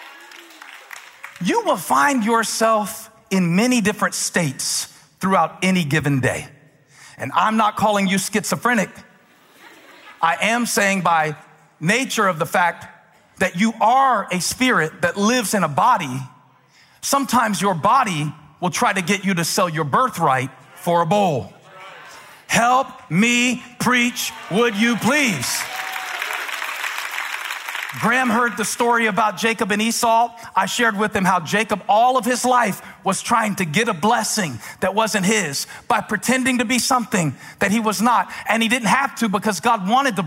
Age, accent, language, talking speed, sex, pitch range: 40-59, American, English, 150 wpm, male, 190-240 Hz